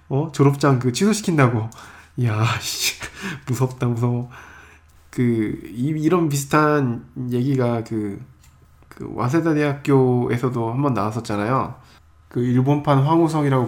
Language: Korean